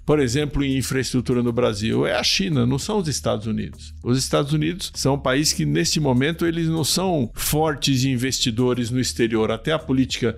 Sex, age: male, 50-69